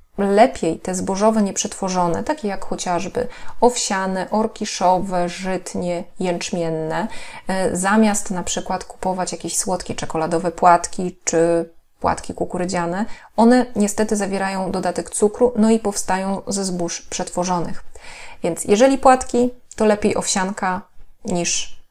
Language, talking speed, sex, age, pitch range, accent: Polish, 110 wpm, female, 20-39, 180-220 Hz, native